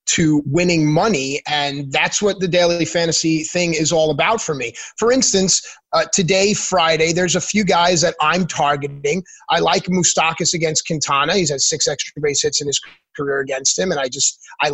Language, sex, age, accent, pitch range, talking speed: English, male, 30-49, American, 155-190 Hz, 190 wpm